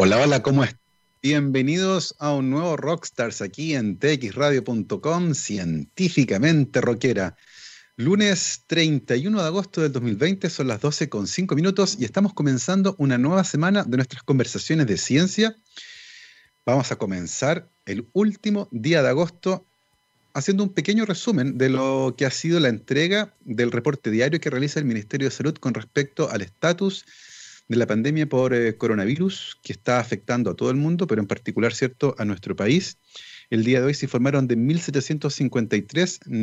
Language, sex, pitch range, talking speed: Spanish, male, 120-170 Hz, 155 wpm